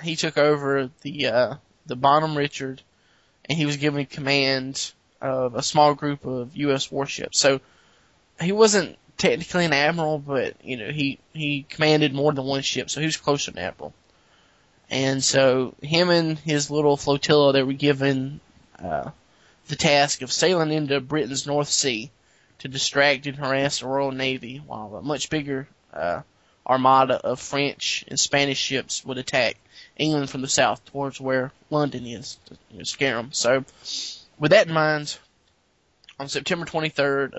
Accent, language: American, English